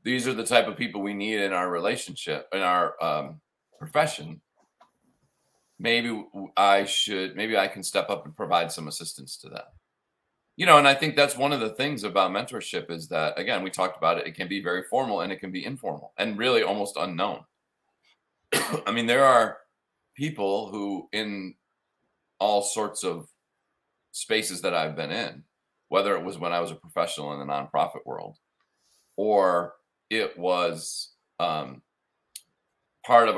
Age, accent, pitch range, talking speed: 40-59, American, 90-120 Hz, 170 wpm